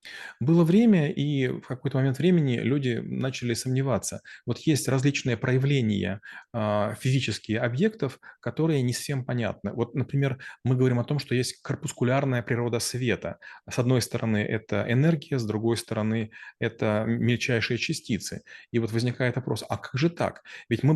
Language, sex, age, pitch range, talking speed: Russian, male, 30-49, 115-140 Hz, 150 wpm